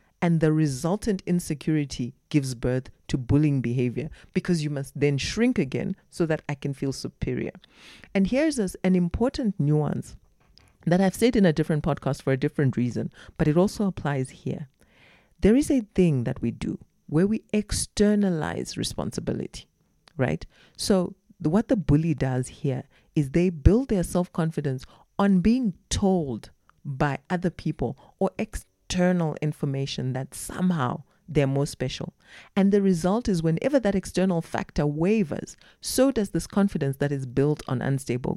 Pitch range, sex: 145-200 Hz, female